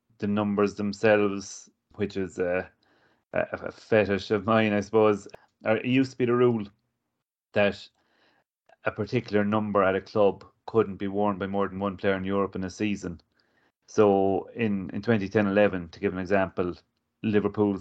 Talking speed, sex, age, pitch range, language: 160 wpm, male, 30-49, 95-105 Hz, English